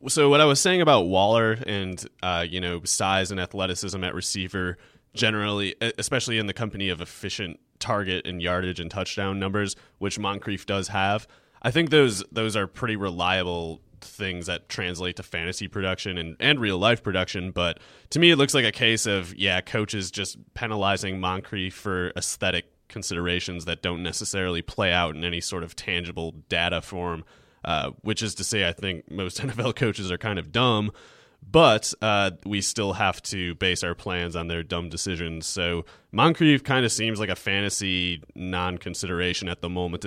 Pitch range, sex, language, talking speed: 90-110 Hz, male, English, 180 wpm